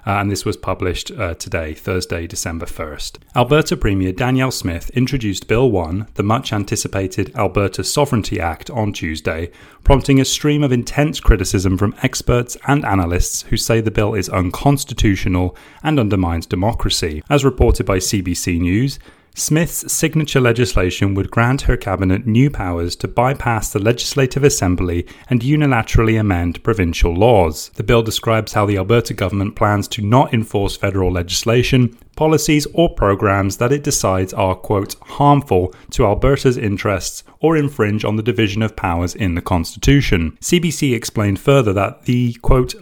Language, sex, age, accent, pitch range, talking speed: English, male, 30-49, British, 95-130 Hz, 150 wpm